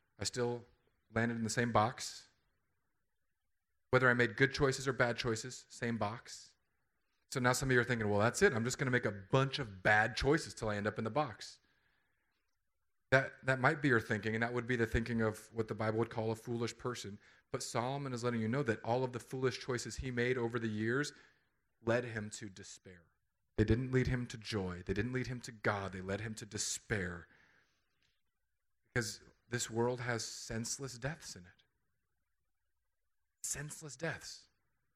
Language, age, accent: English, 30-49, American